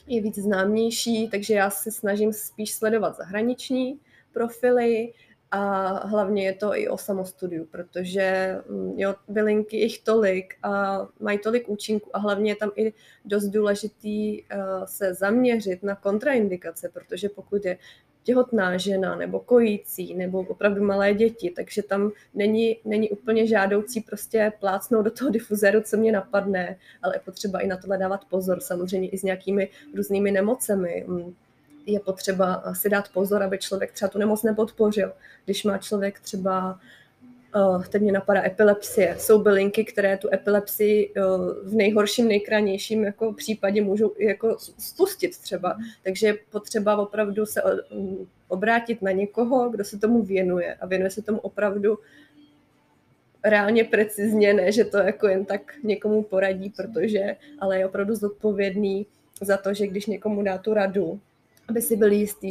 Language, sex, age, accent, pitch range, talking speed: Czech, female, 20-39, native, 195-215 Hz, 150 wpm